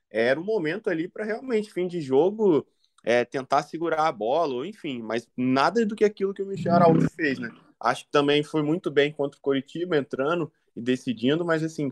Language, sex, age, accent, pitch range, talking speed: Portuguese, male, 20-39, Brazilian, 130-175 Hz, 200 wpm